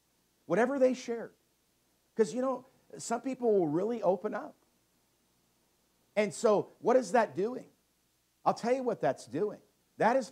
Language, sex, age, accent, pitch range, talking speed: English, male, 50-69, American, 135-200 Hz, 150 wpm